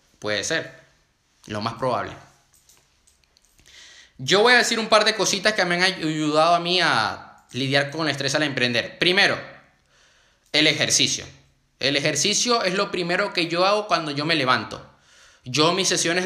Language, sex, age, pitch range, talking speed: Spanish, male, 20-39, 115-190 Hz, 160 wpm